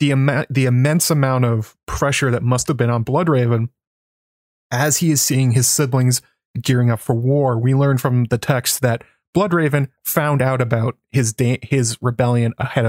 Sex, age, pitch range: male, 20-39, 120-140 Hz